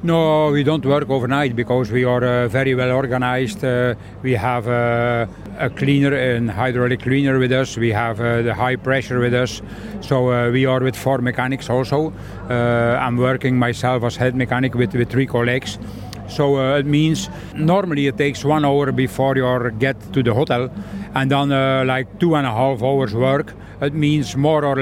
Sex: male